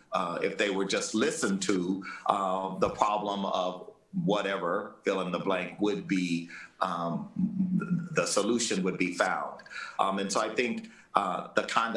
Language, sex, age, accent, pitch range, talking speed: English, male, 50-69, American, 95-140 Hz, 160 wpm